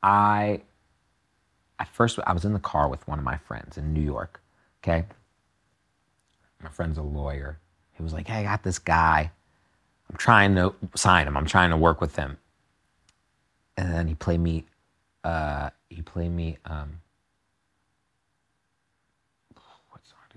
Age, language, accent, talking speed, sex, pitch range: 40-59, English, American, 140 wpm, male, 80-105 Hz